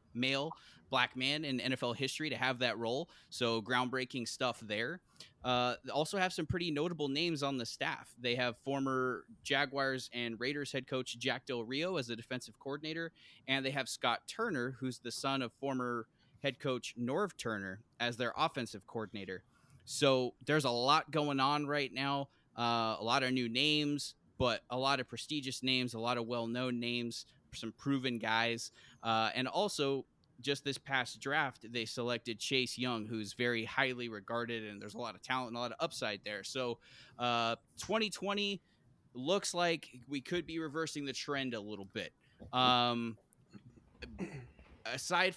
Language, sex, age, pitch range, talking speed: English, male, 20-39, 120-140 Hz, 170 wpm